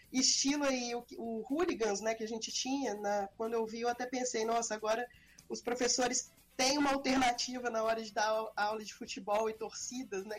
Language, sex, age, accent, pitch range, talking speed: Portuguese, female, 20-39, Brazilian, 210-255 Hz, 195 wpm